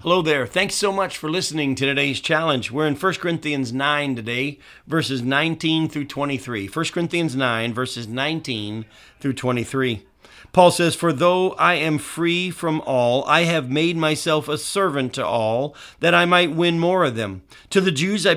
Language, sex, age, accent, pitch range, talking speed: English, male, 50-69, American, 135-175 Hz, 180 wpm